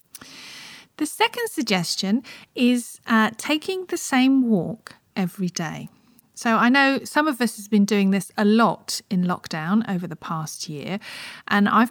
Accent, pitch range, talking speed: British, 180-235 Hz, 155 wpm